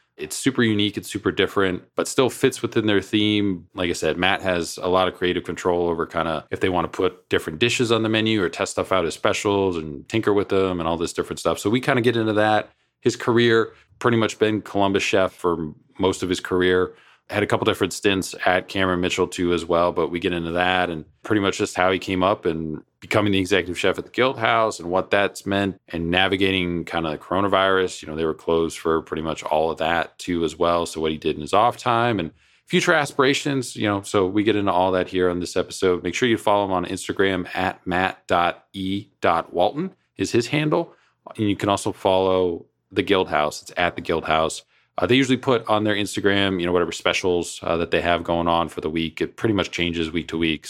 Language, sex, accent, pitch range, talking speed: English, male, American, 85-105 Hz, 235 wpm